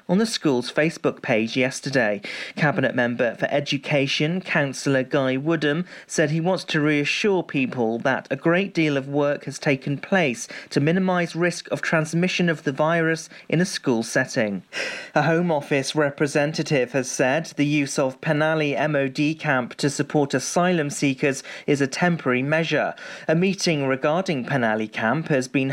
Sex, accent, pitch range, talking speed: male, British, 135-165 Hz, 155 wpm